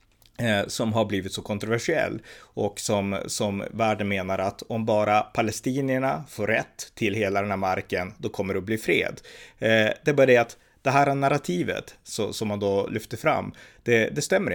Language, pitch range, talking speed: Swedish, 100-125 Hz, 170 wpm